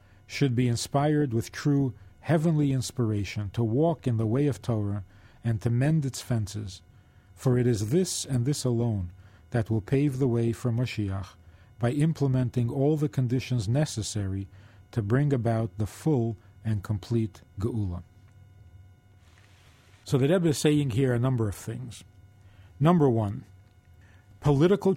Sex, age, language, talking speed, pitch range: male, 40-59, English, 145 wpm, 100-140 Hz